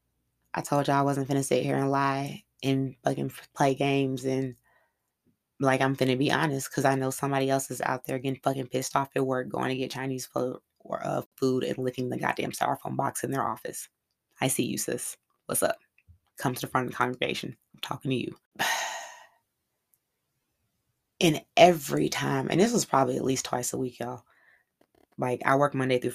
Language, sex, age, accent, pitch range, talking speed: English, female, 20-39, American, 125-140 Hz, 200 wpm